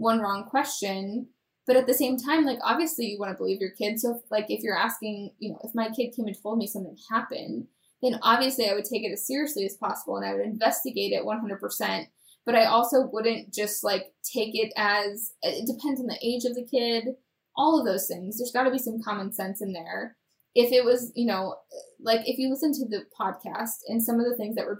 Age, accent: 10-29, American